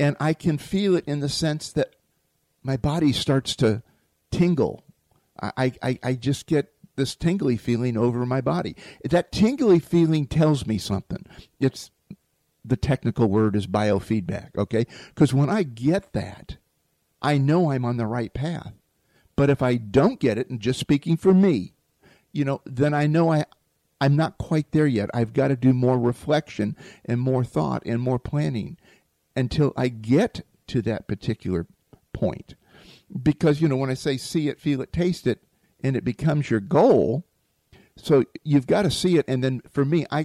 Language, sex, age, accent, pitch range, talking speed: English, male, 50-69, American, 115-150 Hz, 180 wpm